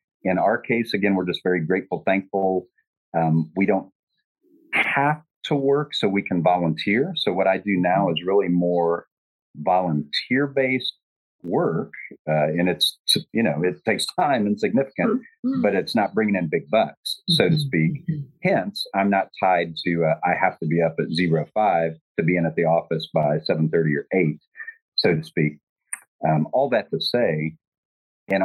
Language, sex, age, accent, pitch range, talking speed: English, male, 40-59, American, 80-120 Hz, 170 wpm